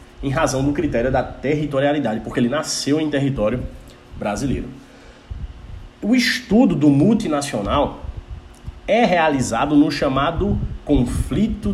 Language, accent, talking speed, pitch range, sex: Portuguese, Brazilian, 105 wpm, 120-195 Hz, male